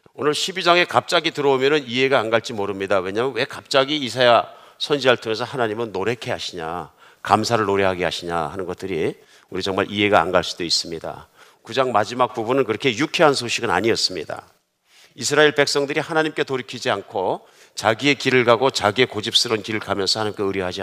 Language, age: Korean, 50-69